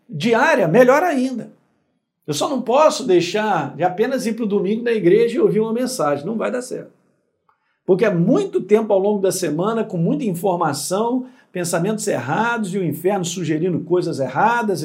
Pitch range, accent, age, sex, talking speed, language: 190-270 Hz, Brazilian, 50-69, male, 175 wpm, Portuguese